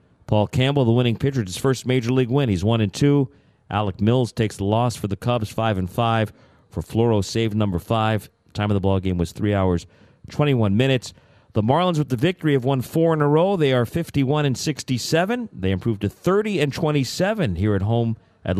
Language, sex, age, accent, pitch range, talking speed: English, male, 40-59, American, 100-130 Hz, 215 wpm